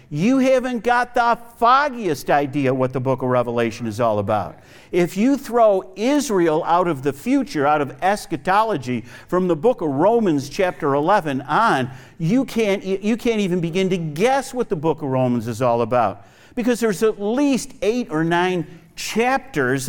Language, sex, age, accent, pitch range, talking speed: English, male, 50-69, American, 145-215 Hz, 170 wpm